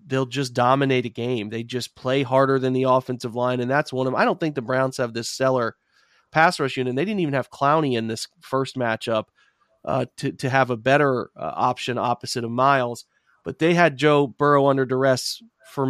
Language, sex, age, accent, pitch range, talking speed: English, male, 30-49, American, 125-145 Hz, 215 wpm